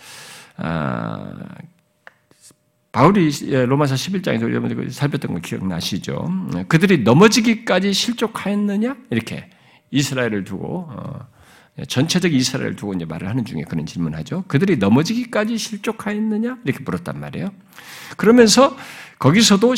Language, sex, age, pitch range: Korean, male, 50-69, 145-245 Hz